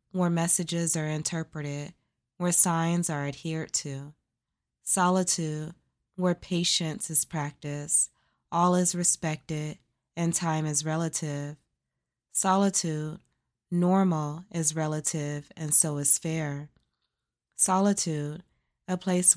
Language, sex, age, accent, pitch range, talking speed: English, female, 20-39, American, 150-175 Hz, 100 wpm